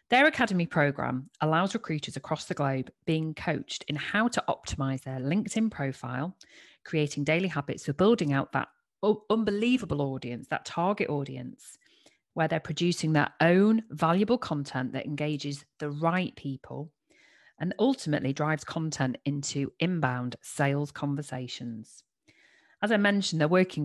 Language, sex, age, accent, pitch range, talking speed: English, female, 40-59, British, 140-185 Hz, 135 wpm